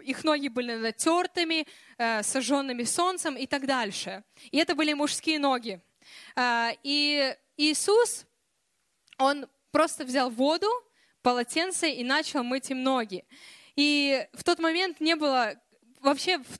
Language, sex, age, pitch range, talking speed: Russian, female, 20-39, 260-325 Hz, 120 wpm